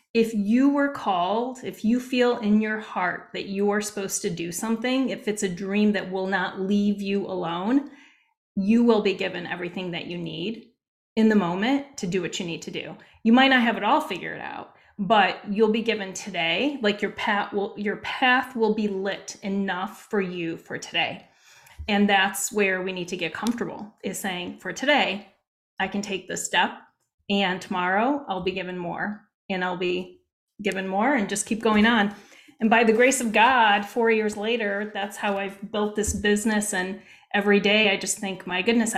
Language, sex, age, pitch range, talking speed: English, female, 30-49, 190-225 Hz, 195 wpm